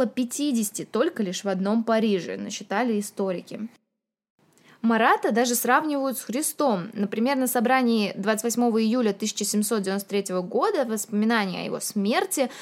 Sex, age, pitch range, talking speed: female, 20-39, 205-260 Hz, 115 wpm